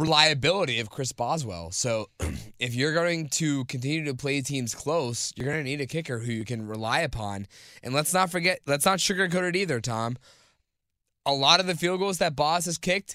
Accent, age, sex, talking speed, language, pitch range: American, 20-39, male, 205 wpm, English, 120-160 Hz